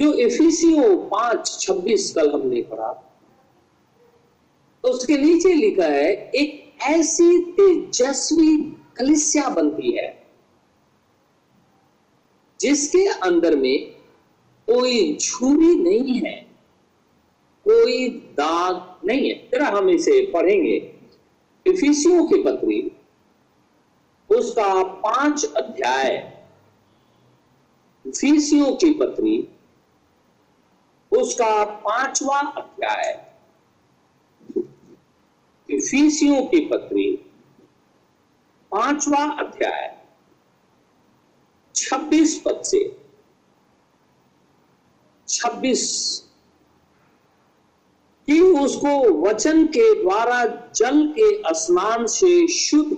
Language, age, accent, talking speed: Hindi, 50-69, native, 70 wpm